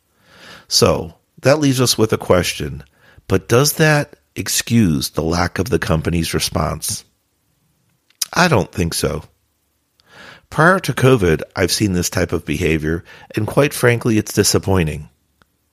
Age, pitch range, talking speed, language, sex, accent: 50-69, 95-135 Hz, 135 wpm, English, male, American